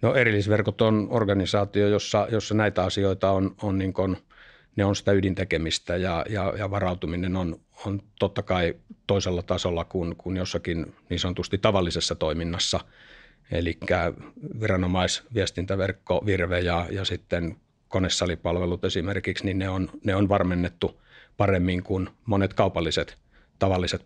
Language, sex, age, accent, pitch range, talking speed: Finnish, male, 50-69, native, 90-100 Hz, 125 wpm